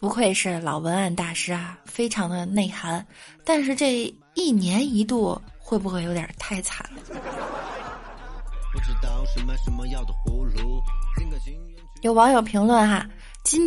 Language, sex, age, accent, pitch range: Chinese, female, 20-39, native, 180-235 Hz